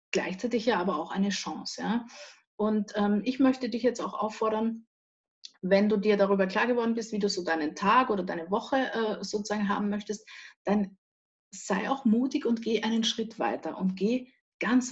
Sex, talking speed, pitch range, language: female, 180 wpm, 195-230 Hz, German